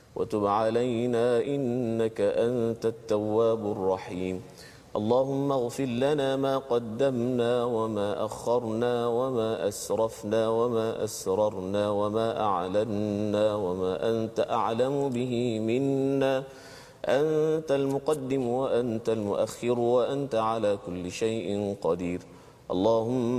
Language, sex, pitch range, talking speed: Malayalam, male, 110-135 Hz, 85 wpm